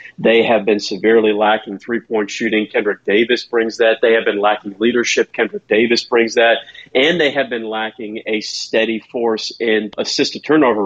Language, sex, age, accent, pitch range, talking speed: English, male, 40-59, American, 110-130 Hz, 165 wpm